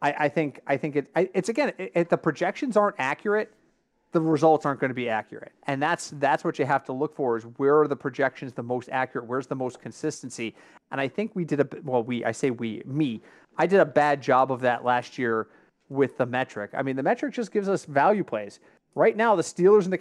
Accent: American